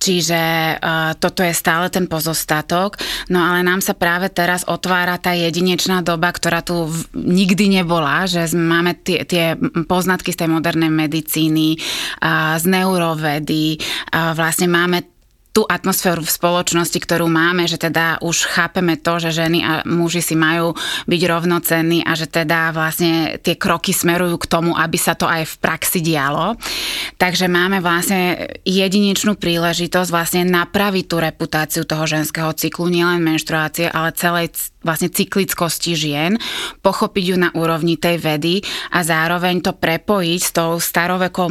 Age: 20-39